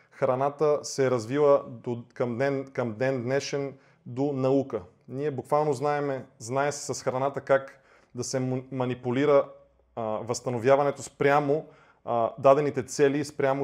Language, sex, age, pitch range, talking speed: Bulgarian, male, 30-49, 125-140 Hz, 130 wpm